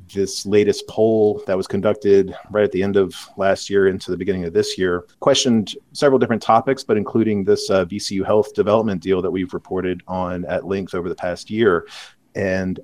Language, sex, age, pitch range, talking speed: English, male, 30-49, 90-110 Hz, 195 wpm